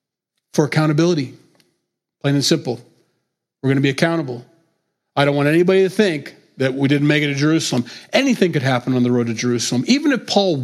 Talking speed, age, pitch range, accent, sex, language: 190 wpm, 40-59, 130-165 Hz, American, male, English